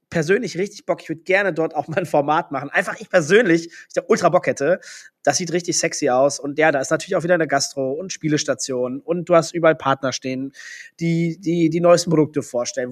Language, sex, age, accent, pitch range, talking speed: German, male, 20-39, German, 140-175 Hz, 225 wpm